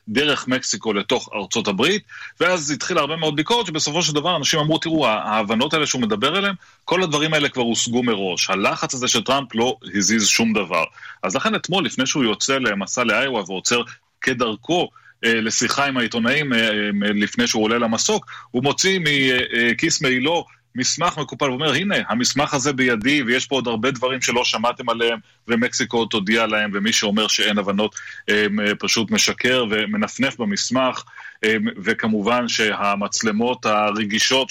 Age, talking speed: 30-49, 150 wpm